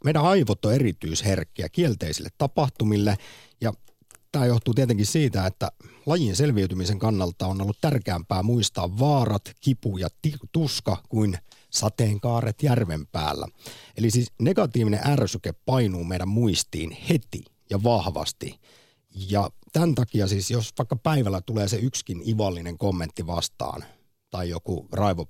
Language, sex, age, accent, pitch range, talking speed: Finnish, male, 50-69, native, 95-125 Hz, 130 wpm